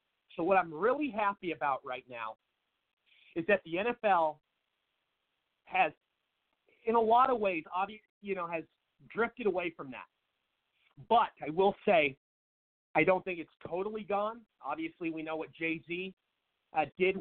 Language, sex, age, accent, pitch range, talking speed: English, male, 40-59, American, 160-210 Hz, 150 wpm